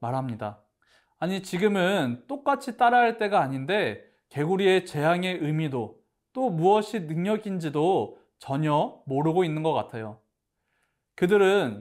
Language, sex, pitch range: Korean, male, 135-190 Hz